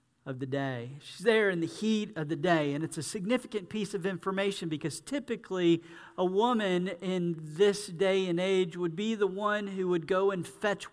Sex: male